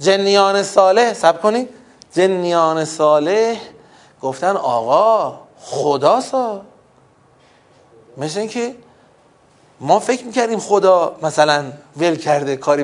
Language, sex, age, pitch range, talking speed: Persian, male, 30-49, 140-210 Hz, 95 wpm